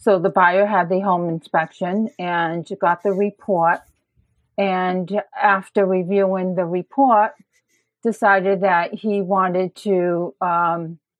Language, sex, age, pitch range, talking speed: English, female, 40-59, 180-215 Hz, 120 wpm